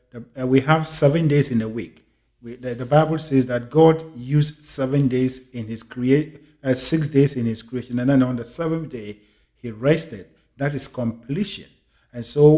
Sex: male